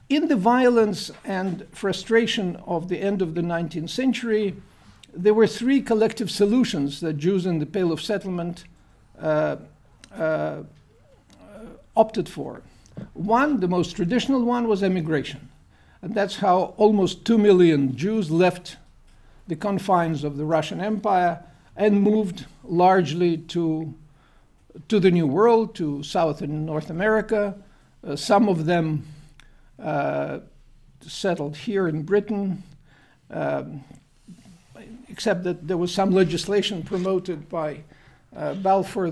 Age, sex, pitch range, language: 50-69, male, 160-210 Hz, English